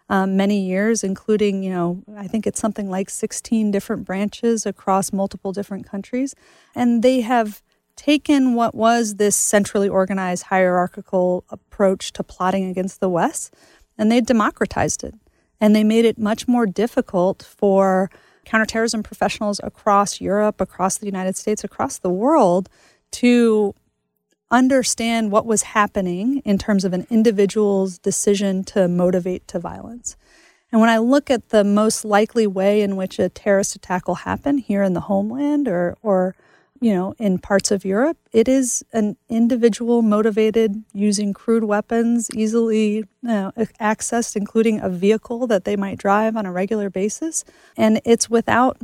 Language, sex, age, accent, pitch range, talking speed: English, female, 30-49, American, 195-230 Hz, 150 wpm